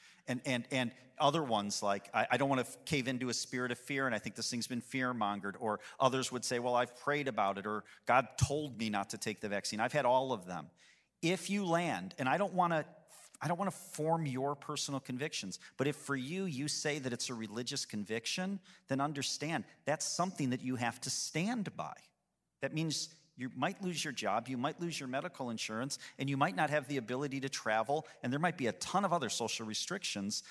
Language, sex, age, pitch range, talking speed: English, male, 40-59, 120-155 Hz, 220 wpm